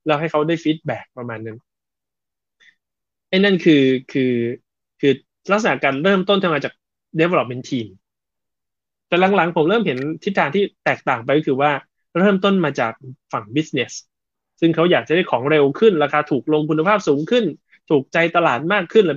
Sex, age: male, 20-39